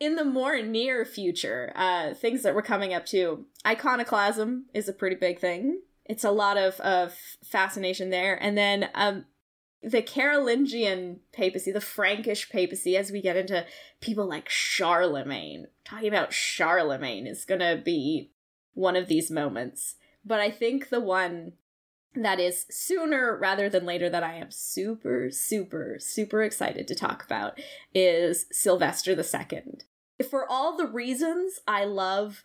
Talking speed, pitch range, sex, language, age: 150 wpm, 185-235 Hz, female, English, 10-29